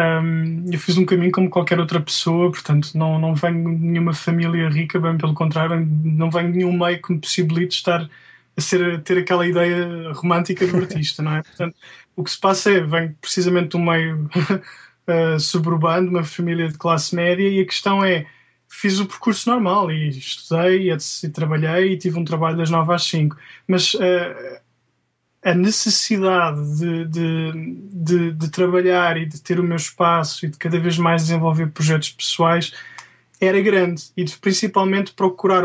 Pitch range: 165-185 Hz